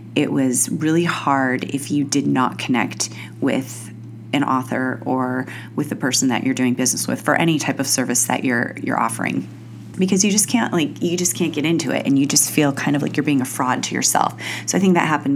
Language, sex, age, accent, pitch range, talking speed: English, female, 30-49, American, 130-170 Hz, 230 wpm